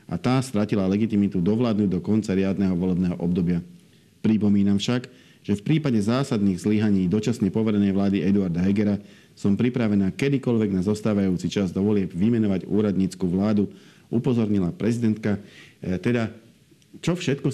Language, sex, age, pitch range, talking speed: Slovak, male, 50-69, 95-110 Hz, 130 wpm